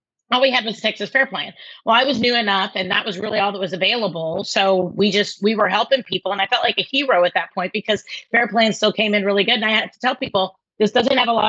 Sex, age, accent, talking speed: female, 30-49, American, 290 wpm